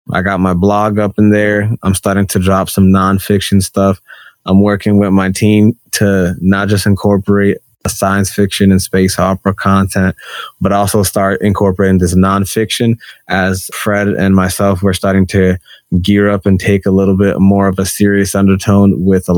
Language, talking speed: English, 175 wpm